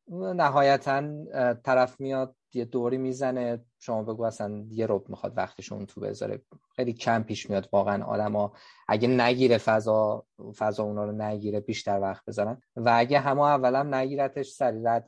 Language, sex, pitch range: Persian, male, 110-135 Hz